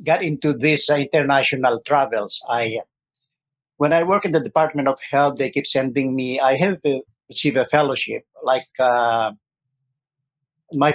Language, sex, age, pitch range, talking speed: English, male, 50-69, 120-140 Hz, 140 wpm